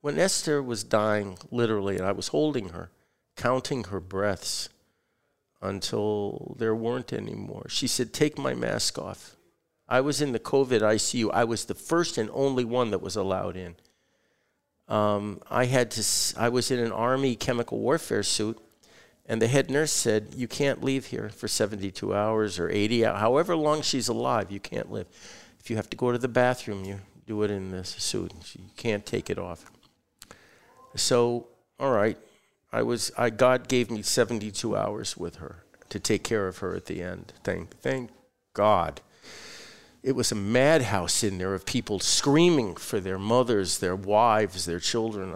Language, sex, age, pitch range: English, male, 50-69, 100-125 Hz